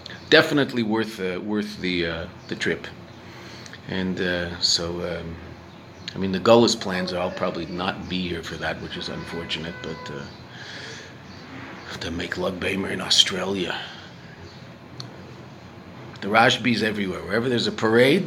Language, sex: English, male